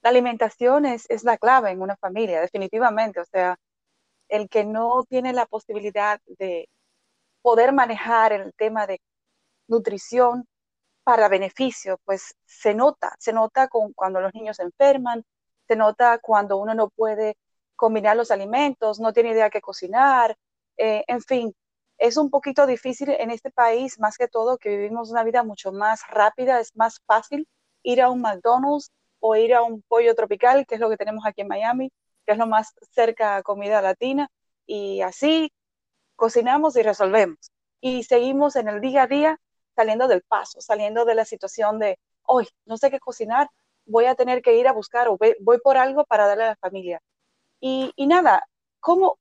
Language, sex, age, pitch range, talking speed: Spanish, female, 30-49, 215-255 Hz, 180 wpm